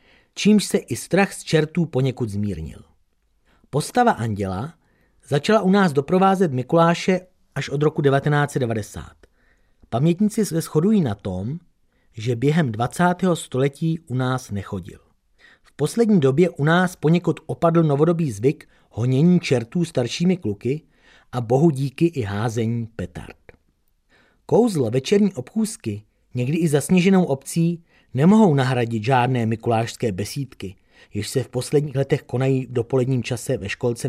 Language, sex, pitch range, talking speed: Czech, male, 115-170 Hz, 130 wpm